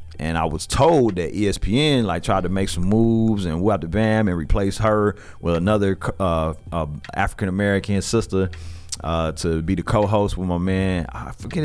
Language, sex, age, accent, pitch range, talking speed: English, male, 30-49, American, 85-100 Hz, 185 wpm